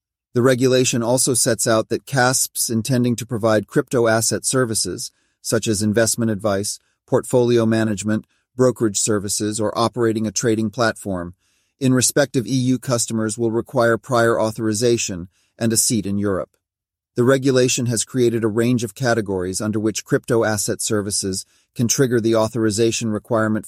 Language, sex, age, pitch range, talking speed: English, male, 40-59, 110-125 Hz, 145 wpm